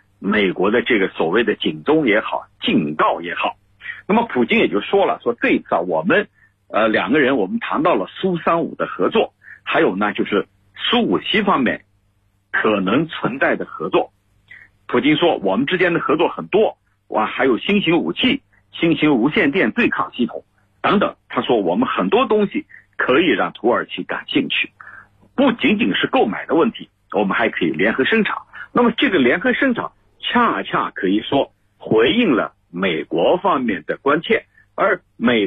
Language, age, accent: Chinese, 50-69, native